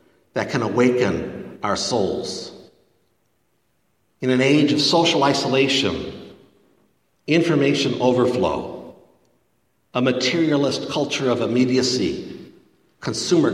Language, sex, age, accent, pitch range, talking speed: English, male, 60-79, American, 105-135 Hz, 85 wpm